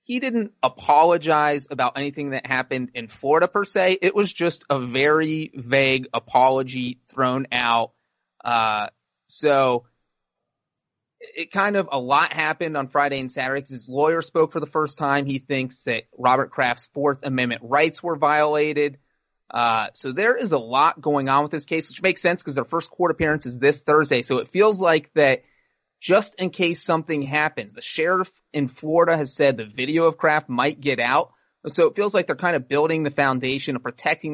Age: 30-49